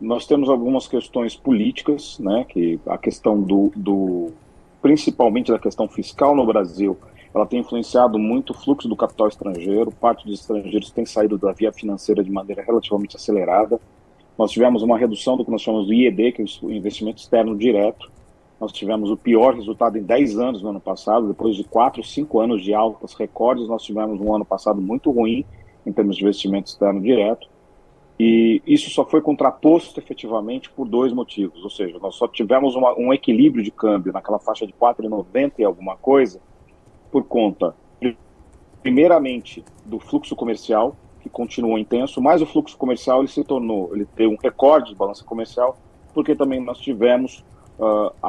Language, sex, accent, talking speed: Portuguese, male, Brazilian, 175 wpm